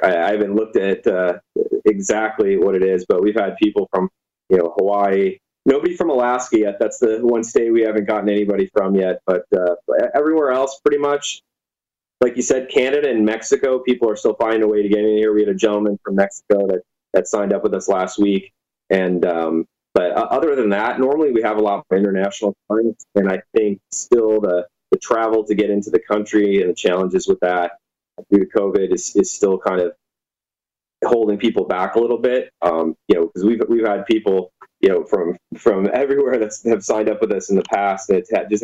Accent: American